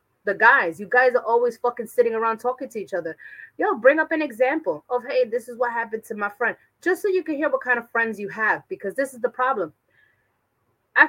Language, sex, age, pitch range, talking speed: English, female, 30-49, 220-305 Hz, 240 wpm